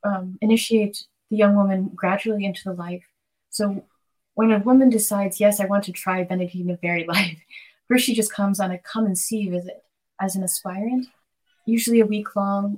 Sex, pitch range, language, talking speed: female, 190-220 Hz, English, 190 wpm